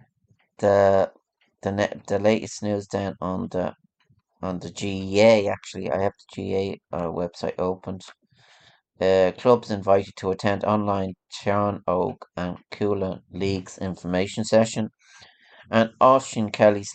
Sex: male